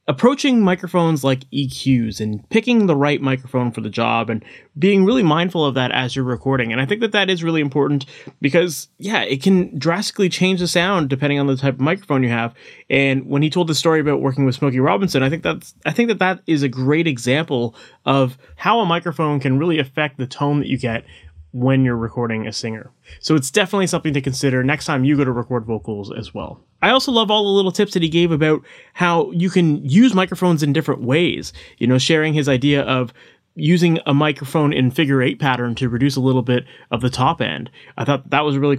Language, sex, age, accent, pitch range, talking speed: English, male, 30-49, American, 130-165 Hz, 225 wpm